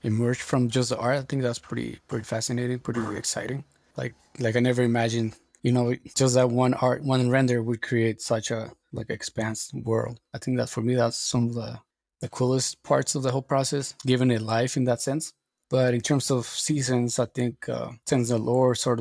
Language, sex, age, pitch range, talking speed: English, male, 20-39, 115-130 Hz, 215 wpm